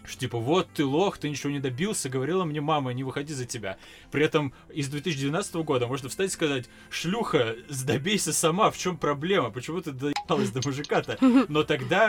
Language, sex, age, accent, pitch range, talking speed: Russian, male, 20-39, native, 125-160 Hz, 190 wpm